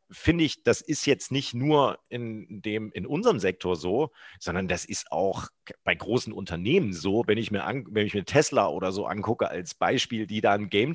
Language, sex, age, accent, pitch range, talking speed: German, male, 40-59, German, 110-150 Hz, 205 wpm